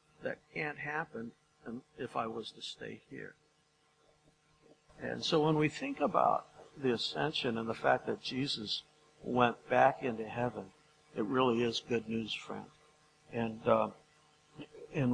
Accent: American